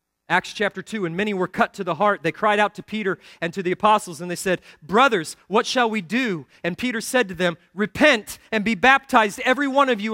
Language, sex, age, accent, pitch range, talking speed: English, male, 30-49, American, 205-250 Hz, 235 wpm